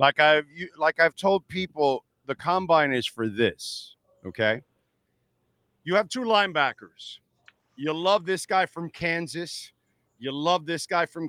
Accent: American